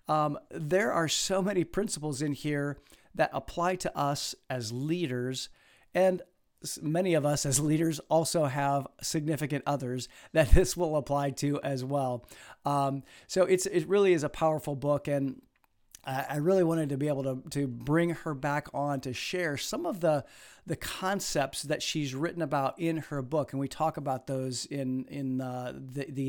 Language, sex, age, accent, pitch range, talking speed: English, male, 50-69, American, 135-165 Hz, 180 wpm